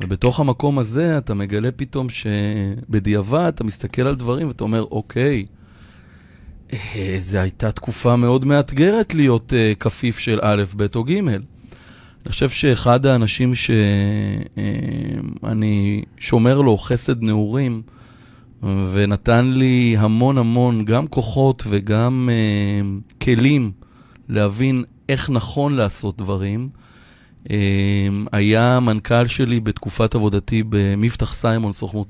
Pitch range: 105-125 Hz